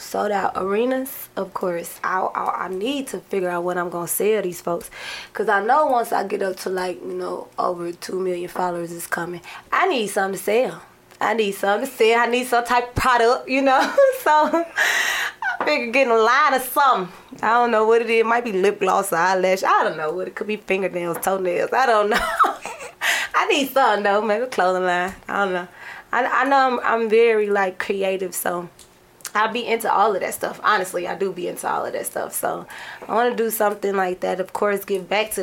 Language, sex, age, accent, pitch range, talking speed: English, female, 20-39, American, 185-225 Hz, 230 wpm